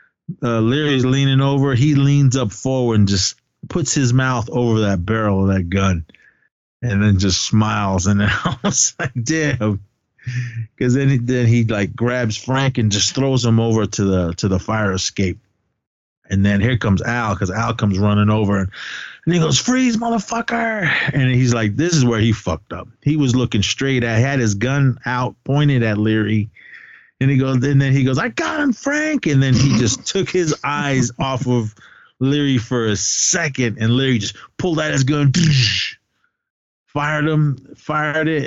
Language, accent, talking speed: English, American, 185 wpm